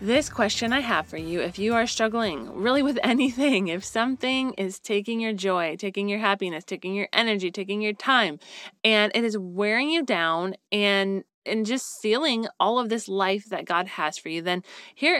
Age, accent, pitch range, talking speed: 20-39, American, 190-245 Hz, 195 wpm